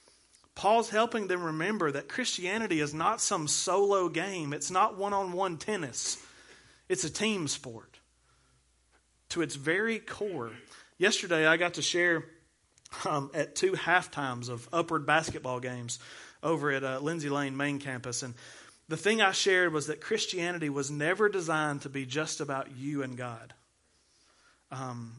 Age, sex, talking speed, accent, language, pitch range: 30-49, male, 150 wpm, American, English, 140-190 Hz